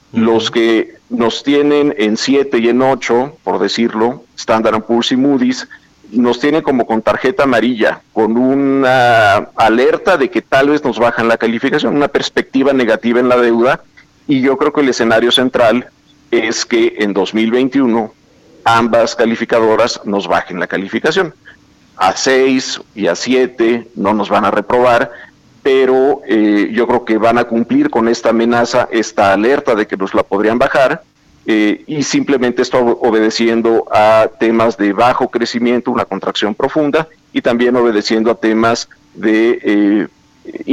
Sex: male